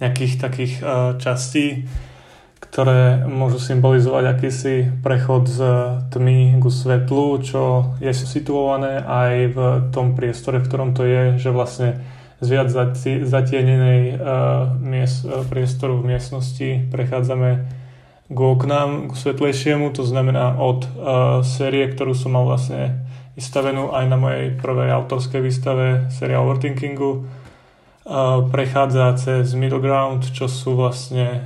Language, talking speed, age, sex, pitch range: Slovak, 115 wpm, 20-39, male, 130-135 Hz